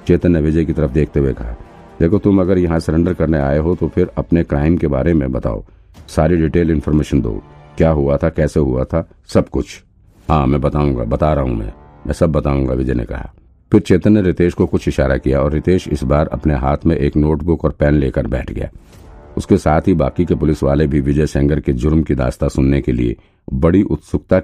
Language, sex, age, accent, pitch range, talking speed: Hindi, male, 50-69, native, 70-85 Hz, 170 wpm